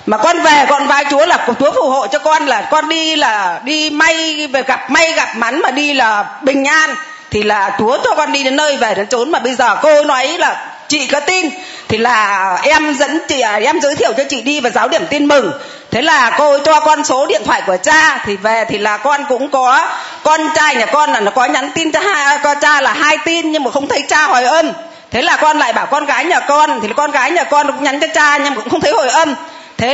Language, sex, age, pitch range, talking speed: Vietnamese, female, 20-39, 265-320 Hz, 265 wpm